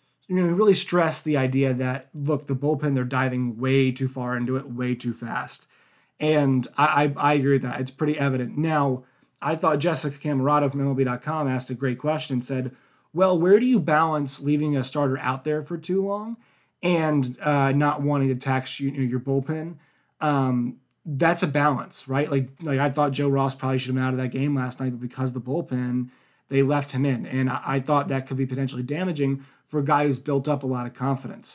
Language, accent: English, American